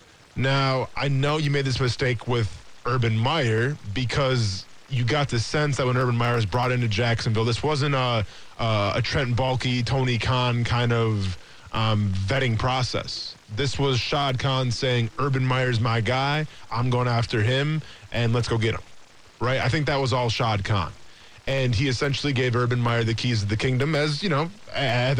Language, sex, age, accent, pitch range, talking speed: English, male, 20-39, American, 115-135 Hz, 185 wpm